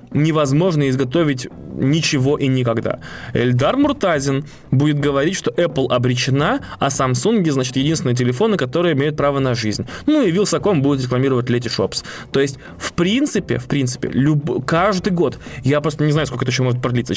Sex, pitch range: male, 125-160 Hz